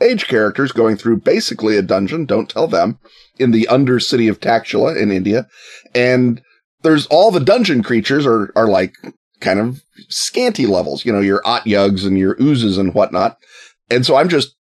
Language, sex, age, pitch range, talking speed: English, male, 30-49, 100-140 Hz, 185 wpm